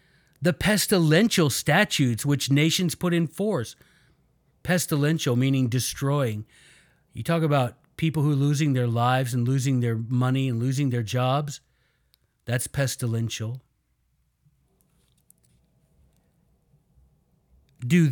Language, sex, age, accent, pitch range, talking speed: English, male, 50-69, American, 130-175 Hz, 105 wpm